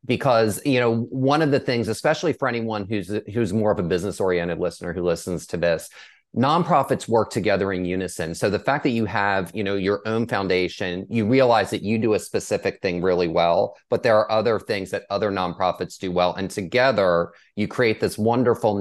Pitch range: 95-115 Hz